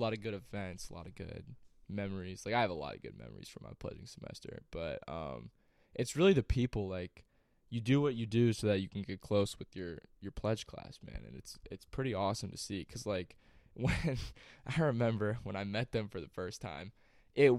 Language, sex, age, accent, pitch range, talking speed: English, male, 20-39, American, 100-120 Hz, 225 wpm